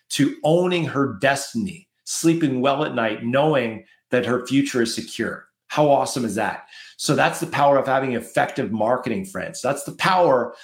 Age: 40-59